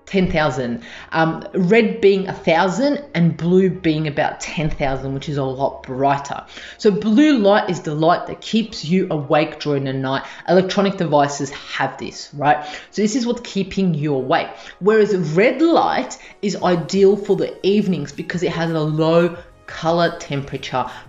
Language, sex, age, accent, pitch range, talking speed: English, female, 20-39, Australian, 145-195 Hz, 155 wpm